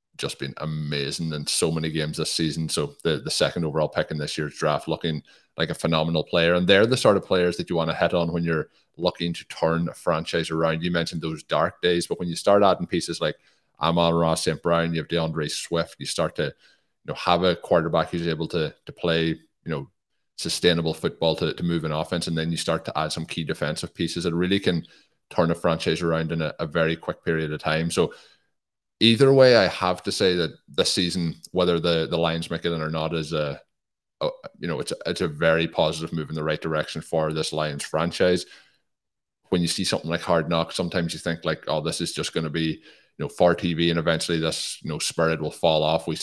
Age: 30-49